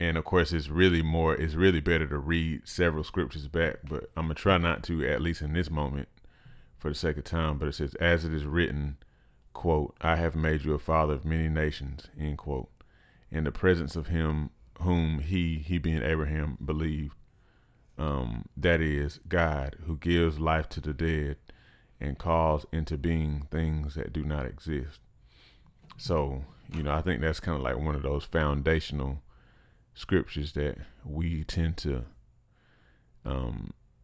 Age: 30-49